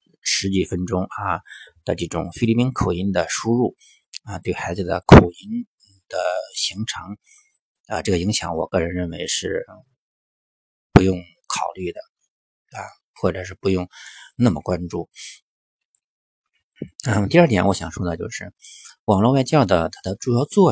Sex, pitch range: male, 85-115 Hz